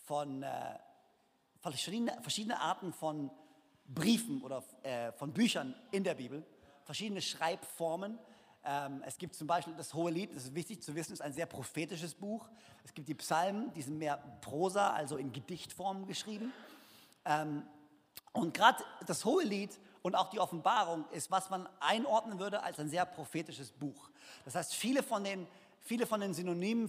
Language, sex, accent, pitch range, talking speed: German, male, German, 160-220 Hz, 160 wpm